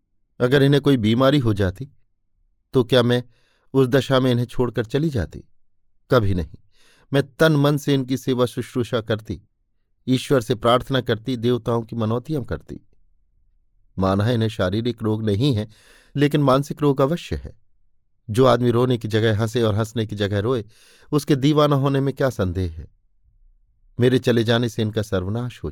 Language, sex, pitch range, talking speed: Hindi, male, 100-130 Hz, 165 wpm